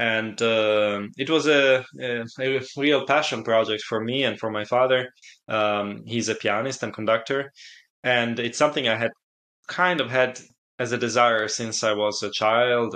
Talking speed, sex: 175 wpm, male